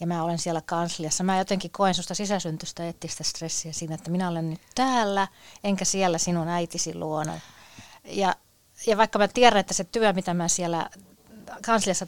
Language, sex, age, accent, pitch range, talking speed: Finnish, female, 30-49, native, 165-195 Hz, 175 wpm